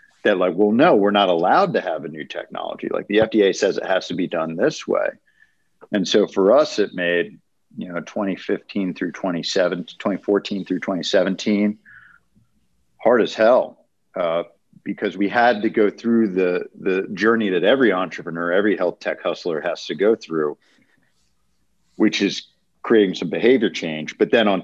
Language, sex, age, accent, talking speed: English, male, 50-69, American, 170 wpm